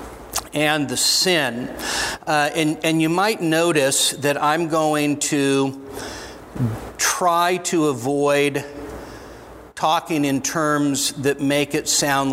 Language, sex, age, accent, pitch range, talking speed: English, male, 50-69, American, 130-150 Hz, 110 wpm